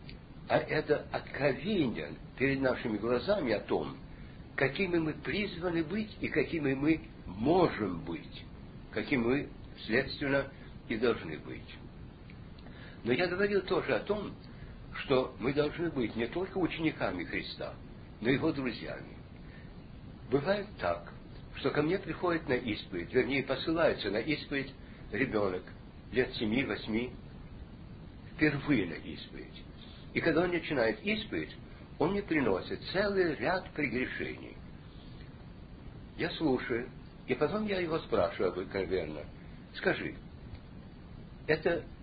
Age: 60-79